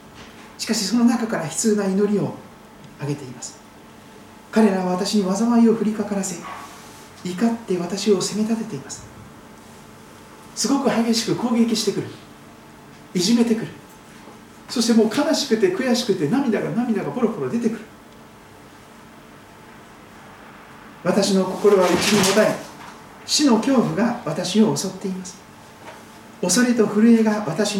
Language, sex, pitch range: Japanese, male, 140-220 Hz